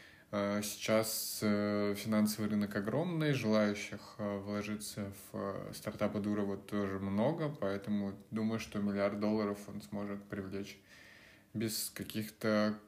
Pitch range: 105-120 Hz